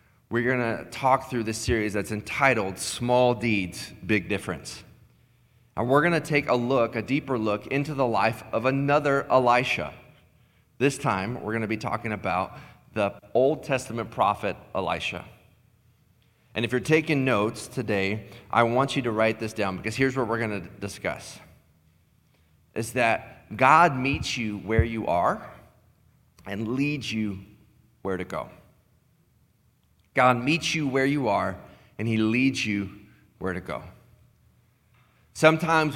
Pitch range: 100-130 Hz